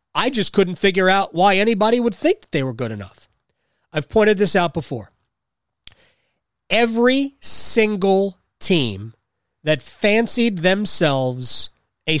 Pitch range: 125-200 Hz